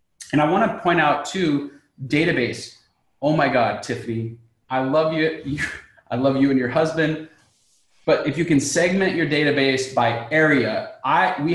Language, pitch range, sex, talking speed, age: English, 130-160 Hz, male, 165 wpm, 20-39